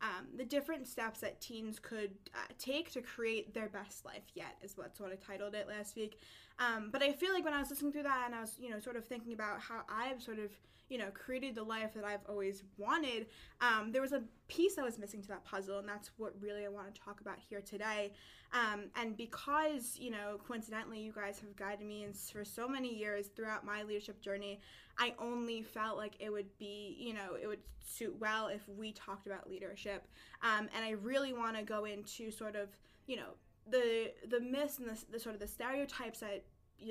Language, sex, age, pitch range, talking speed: English, female, 10-29, 205-245 Hz, 230 wpm